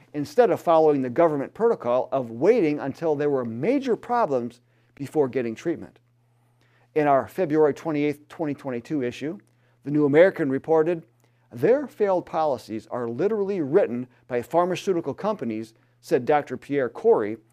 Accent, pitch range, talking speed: American, 120-170 Hz, 135 wpm